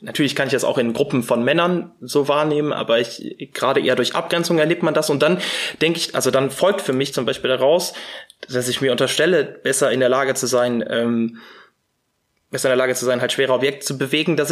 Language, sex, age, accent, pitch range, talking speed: German, male, 20-39, German, 130-165 Hz, 225 wpm